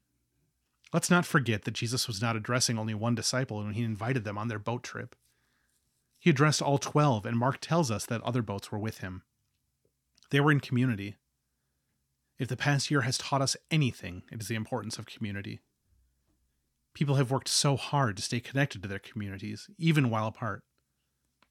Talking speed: 180 wpm